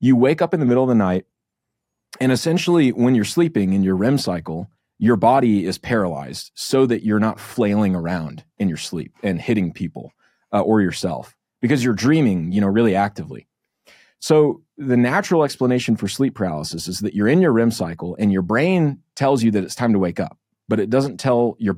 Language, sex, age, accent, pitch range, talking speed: English, male, 30-49, American, 100-130 Hz, 205 wpm